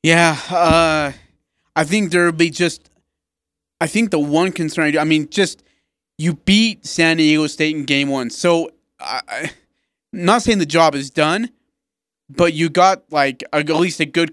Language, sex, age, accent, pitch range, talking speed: English, male, 30-49, American, 145-185 Hz, 190 wpm